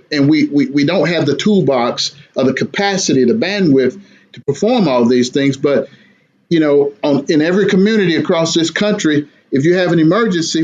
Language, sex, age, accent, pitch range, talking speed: English, male, 50-69, American, 135-165 Hz, 190 wpm